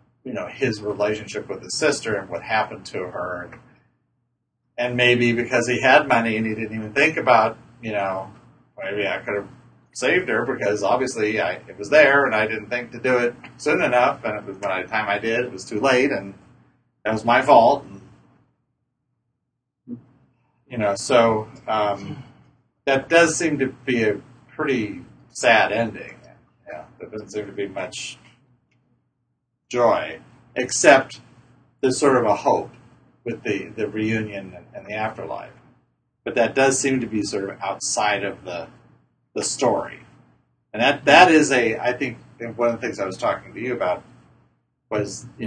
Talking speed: 170 wpm